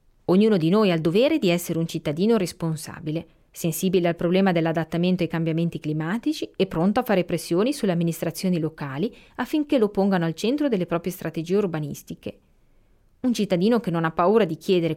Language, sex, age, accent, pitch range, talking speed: Italian, female, 30-49, native, 165-210 Hz, 170 wpm